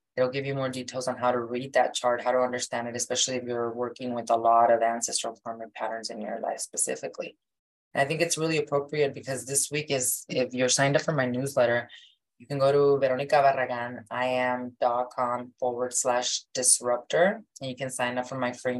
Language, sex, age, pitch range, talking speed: English, female, 20-39, 120-135 Hz, 200 wpm